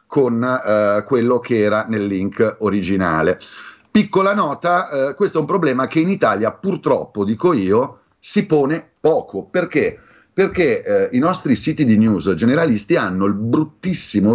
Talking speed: 150 wpm